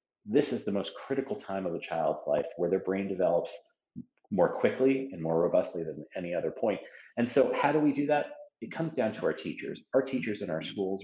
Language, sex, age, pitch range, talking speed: English, male, 30-49, 95-135 Hz, 225 wpm